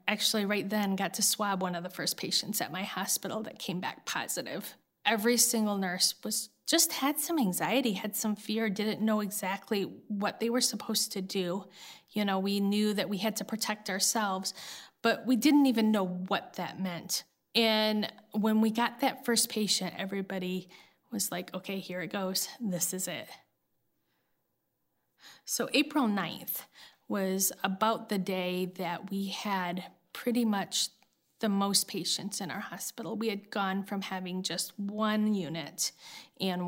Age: 30-49